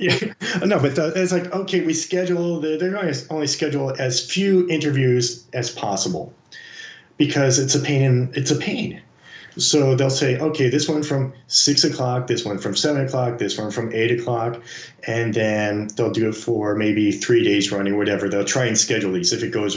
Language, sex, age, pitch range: English, male, 30-49, 115-150 Hz